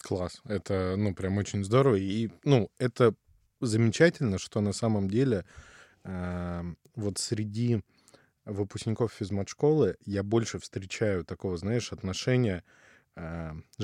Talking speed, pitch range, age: 115 wpm, 95-110 Hz, 20-39